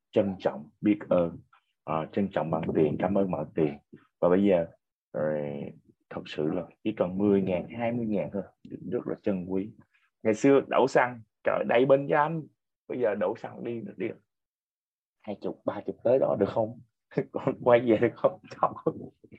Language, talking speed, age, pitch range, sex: Vietnamese, 180 wpm, 20-39, 85-110 Hz, male